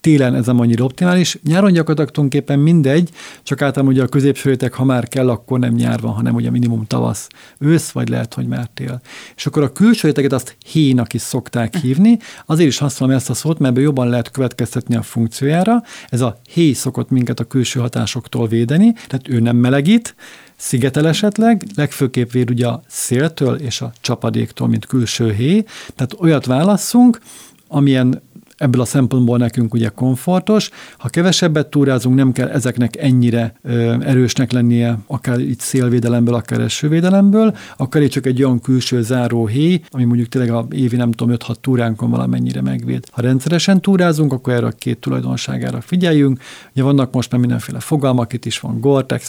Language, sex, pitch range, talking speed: Hungarian, male, 120-150 Hz, 170 wpm